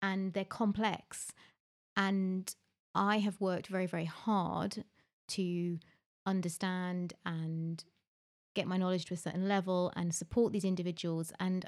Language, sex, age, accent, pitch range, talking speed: English, female, 30-49, British, 175-200 Hz, 130 wpm